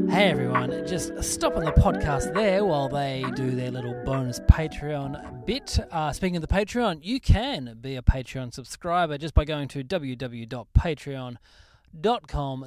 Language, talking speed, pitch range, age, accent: English, 150 wpm, 130-170 Hz, 20-39, Australian